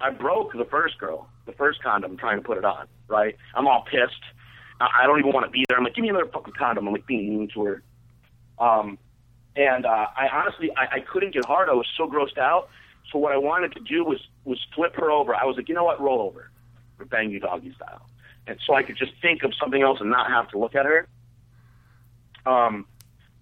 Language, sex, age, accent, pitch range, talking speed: English, male, 40-59, American, 115-135 Hz, 235 wpm